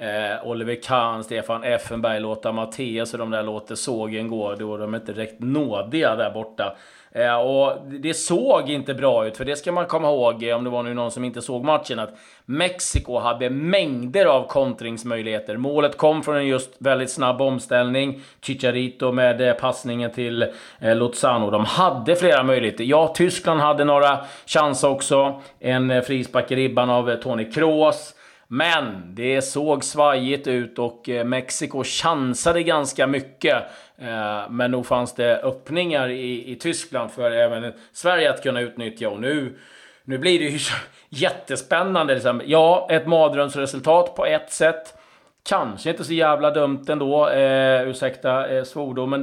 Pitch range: 120-145 Hz